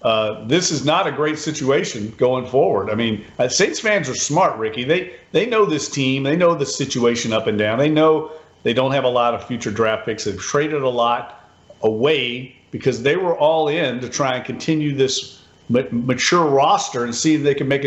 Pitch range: 115-150 Hz